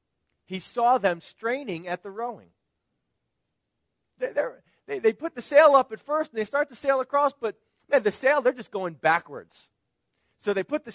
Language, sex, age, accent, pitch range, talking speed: English, male, 40-59, American, 155-225 Hz, 190 wpm